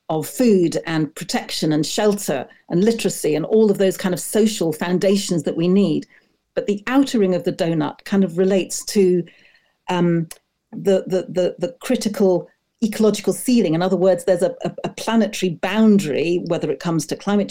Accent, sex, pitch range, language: British, female, 175-215 Hz, English